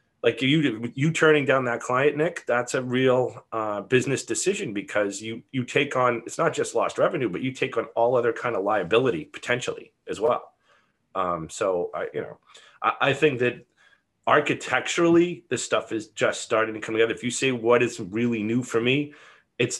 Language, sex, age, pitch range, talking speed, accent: English, male, 30-49, 115-135 Hz, 195 wpm, American